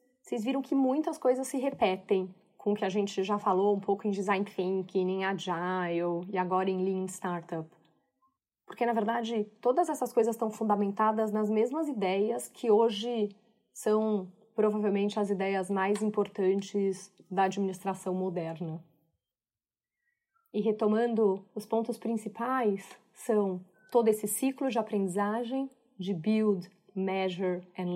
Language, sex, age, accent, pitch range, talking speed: Portuguese, female, 30-49, Brazilian, 190-220 Hz, 135 wpm